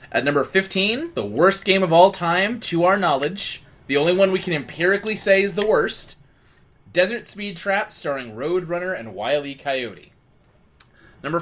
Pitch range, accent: 145-215 Hz, American